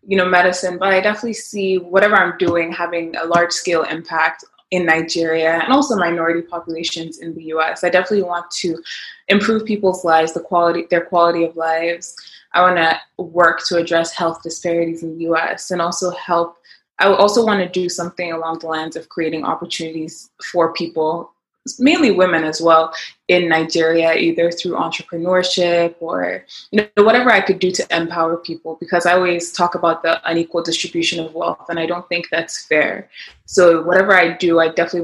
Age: 20-39